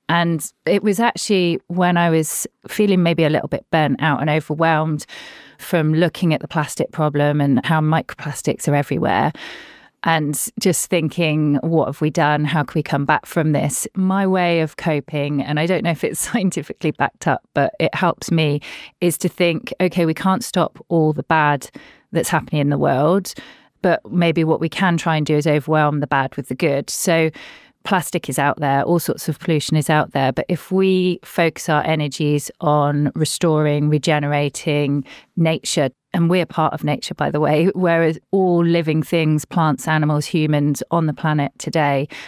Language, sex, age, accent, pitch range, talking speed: English, female, 30-49, British, 145-170 Hz, 185 wpm